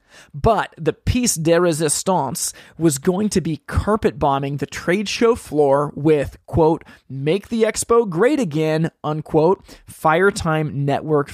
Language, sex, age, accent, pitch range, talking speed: English, male, 20-39, American, 150-190 Hz, 140 wpm